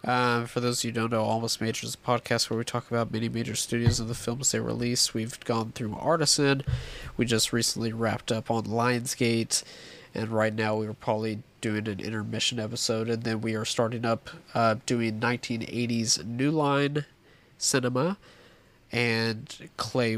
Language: English